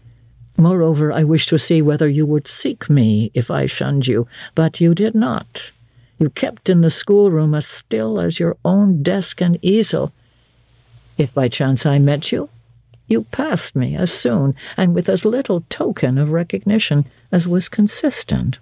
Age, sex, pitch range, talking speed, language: 60-79, female, 115-150 Hz, 170 wpm, English